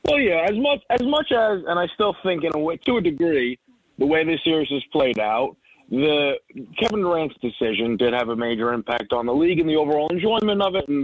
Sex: male